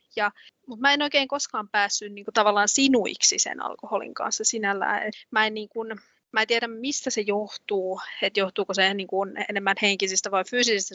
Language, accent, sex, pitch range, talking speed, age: Finnish, native, female, 195-225 Hz, 165 wpm, 30-49